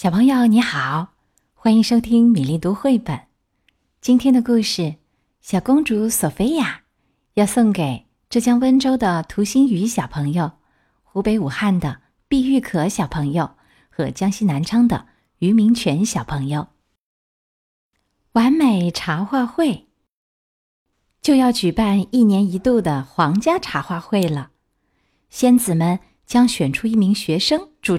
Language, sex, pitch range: Chinese, female, 175-245 Hz